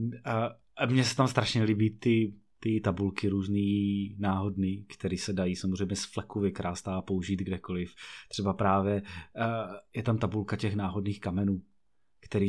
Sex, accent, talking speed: male, native, 150 wpm